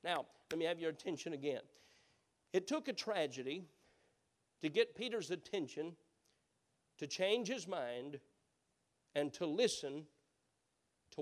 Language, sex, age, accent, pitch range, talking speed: English, male, 50-69, American, 145-215 Hz, 125 wpm